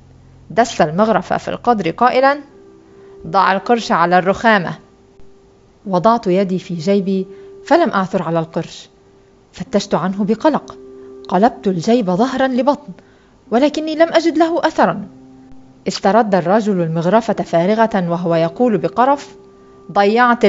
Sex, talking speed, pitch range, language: female, 110 wpm, 185-285 Hz, Arabic